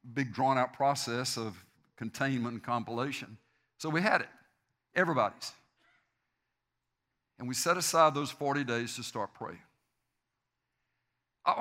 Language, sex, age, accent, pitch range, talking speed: English, male, 60-79, American, 135-180 Hz, 115 wpm